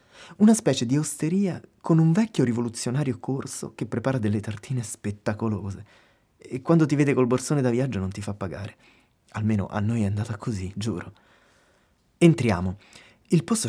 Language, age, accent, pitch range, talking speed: Italian, 20-39, native, 100-135 Hz, 160 wpm